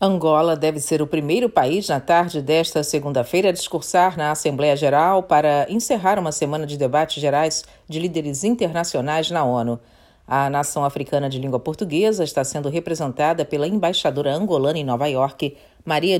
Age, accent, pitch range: 40-59, Brazilian, 145-190 Hz